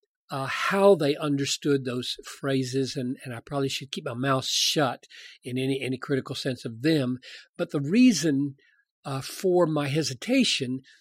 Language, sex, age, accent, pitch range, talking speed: English, male, 50-69, American, 140-200 Hz, 160 wpm